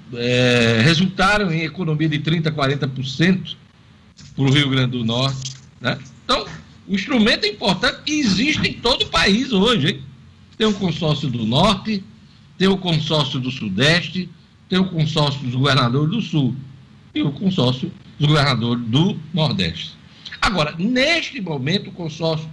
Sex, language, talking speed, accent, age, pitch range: male, Portuguese, 145 wpm, Brazilian, 60-79, 140-205 Hz